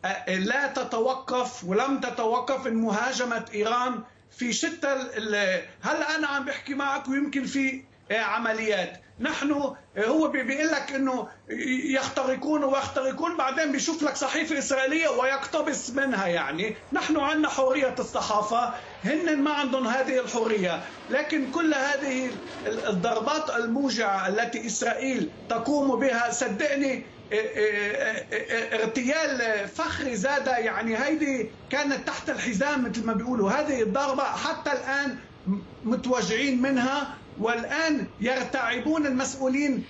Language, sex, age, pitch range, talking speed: Arabic, male, 50-69, 230-280 Hz, 110 wpm